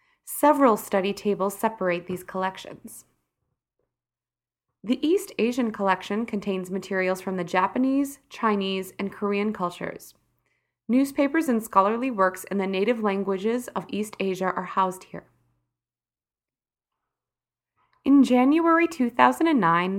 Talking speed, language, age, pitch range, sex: 110 wpm, English, 20-39, 185-260 Hz, female